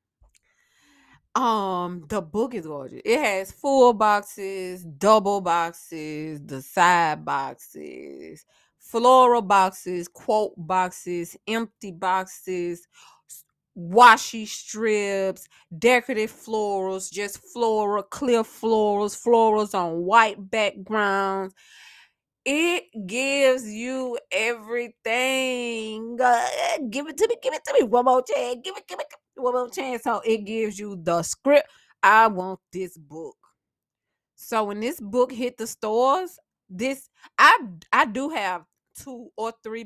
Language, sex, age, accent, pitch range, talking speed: English, female, 20-39, American, 185-240 Hz, 125 wpm